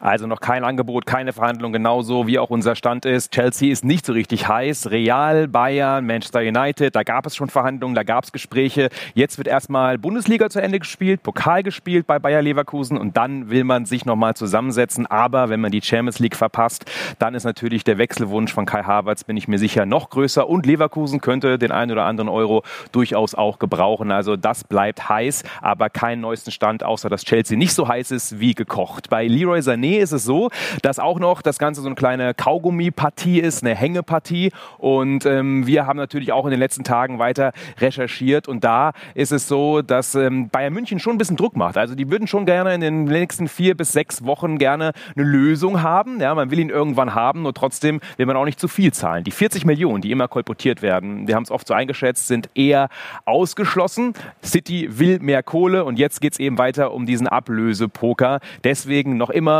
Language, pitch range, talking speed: German, 120-155 Hz, 205 wpm